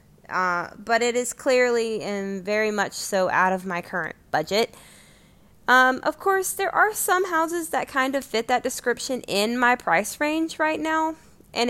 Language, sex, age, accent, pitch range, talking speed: English, female, 10-29, American, 180-250 Hz, 175 wpm